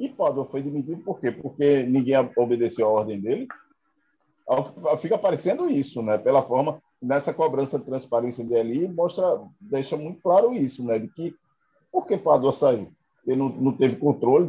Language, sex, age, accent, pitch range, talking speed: Portuguese, male, 50-69, Brazilian, 125-180 Hz, 165 wpm